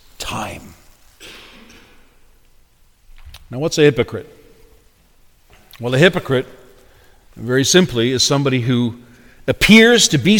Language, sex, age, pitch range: English, male, 50-69, 130-175 Hz